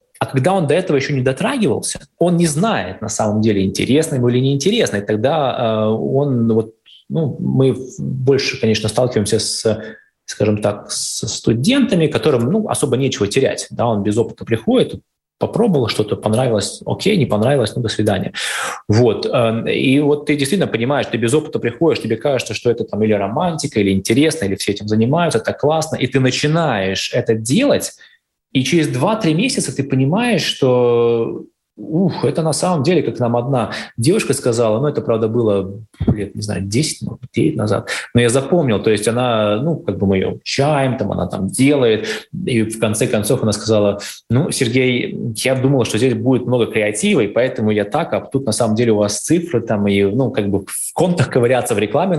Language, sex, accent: Russian, male, native